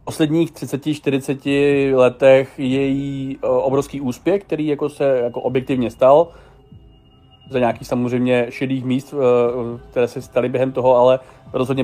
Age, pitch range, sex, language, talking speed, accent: 30-49, 120-140 Hz, male, Czech, 125 wpm, native